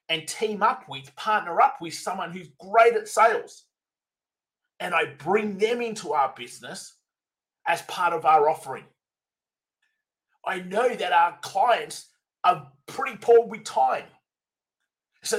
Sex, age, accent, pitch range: male, 30-49, Australian, 175-245 Hz